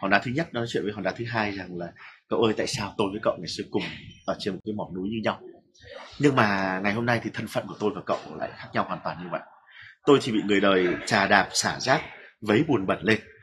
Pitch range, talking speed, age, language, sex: 100-145 Hz, 280 wpm, 30-49, Vietnamese, male